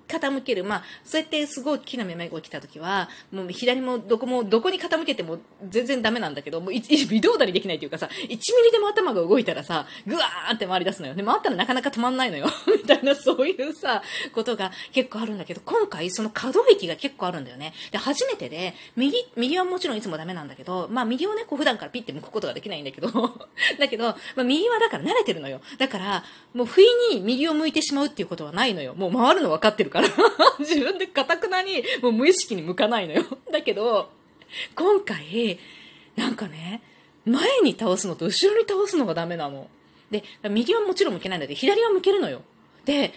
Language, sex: Japanese, female